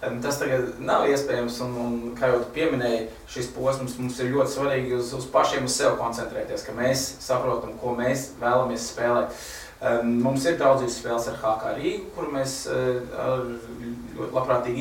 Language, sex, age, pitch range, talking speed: English, male, 20-39, 120-135 Hz, 160 wpm